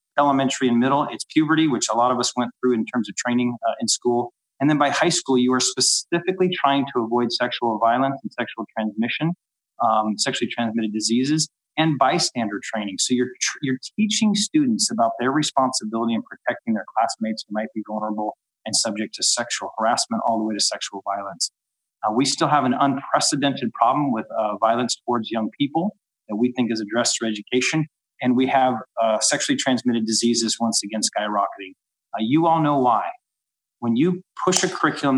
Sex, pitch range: male, 115-150 Hz